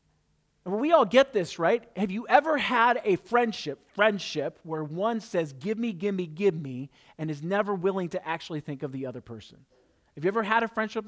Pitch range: 160-225 Hz